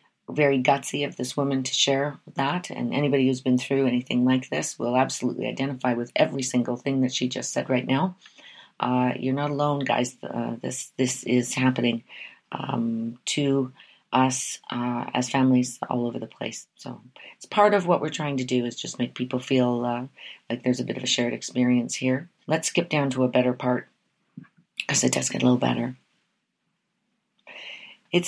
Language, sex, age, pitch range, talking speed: English, female, 40-59, 125-140 Hz, 185 wpm